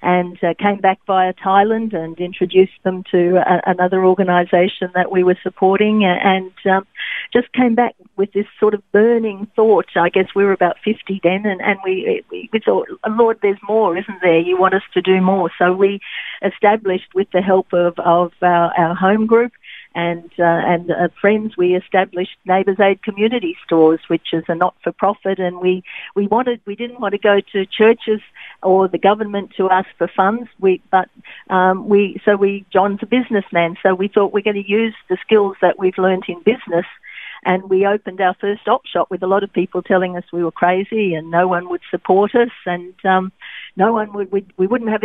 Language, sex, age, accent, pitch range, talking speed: English, female, 50-69, Australian, 180-215 Hz, 200 wpm